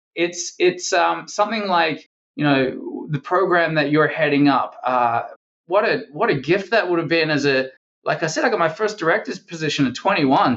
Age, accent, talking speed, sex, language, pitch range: 20-39, Australian, 205 wpm, male, English, 130-170 Hz